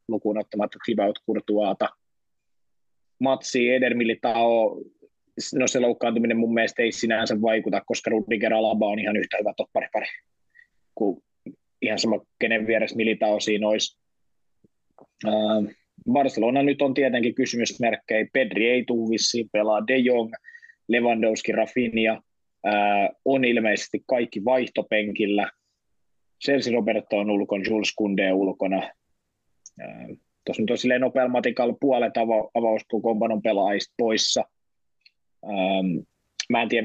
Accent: native